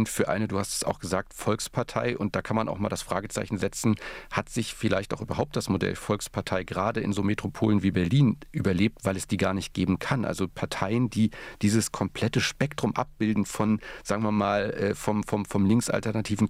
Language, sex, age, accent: German, male, 40-59, German